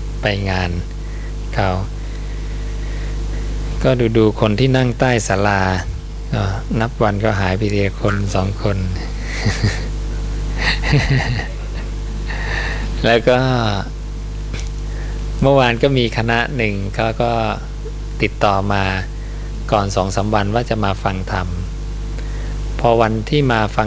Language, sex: English, male